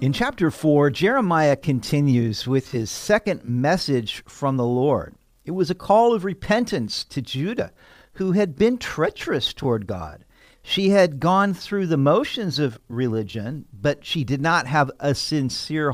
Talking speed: 155 wpm